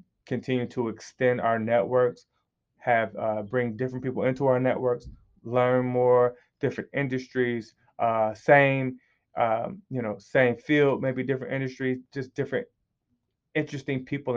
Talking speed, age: 130 wpm, 20-39